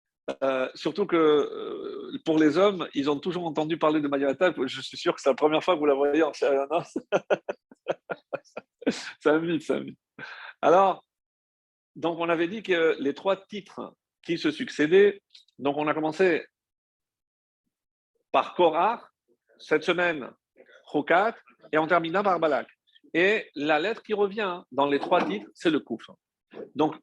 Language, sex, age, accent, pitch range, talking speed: French, male, 50-69, French, 155-230 Hz, 160 wpm